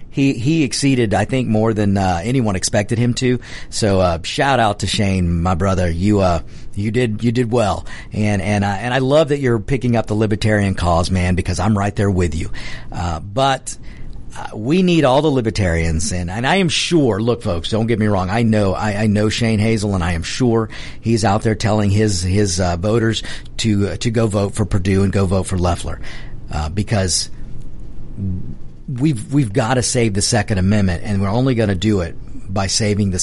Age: 50-69